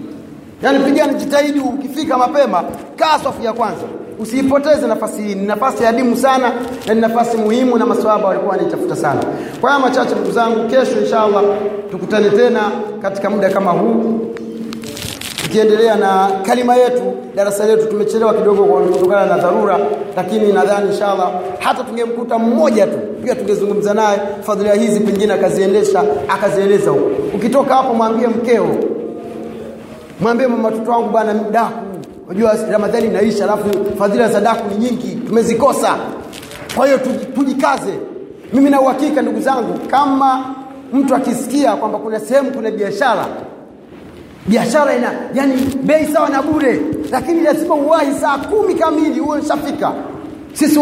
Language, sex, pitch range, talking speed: Swahili, male, 210-270 Hz, 125 wpm